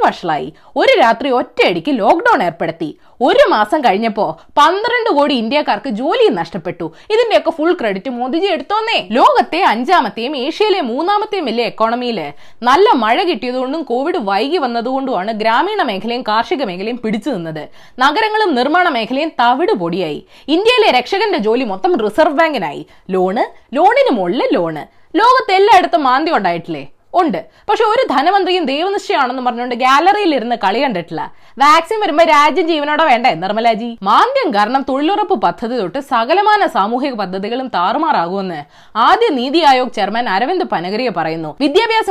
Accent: native